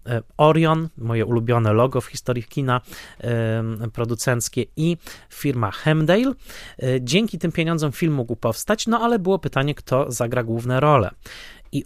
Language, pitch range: Polish, 115-140 Hz